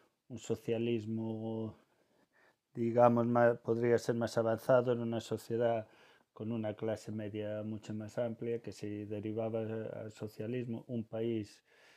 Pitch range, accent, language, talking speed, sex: 105-115 Hz, Spanish, Spanish, 130 wpm, male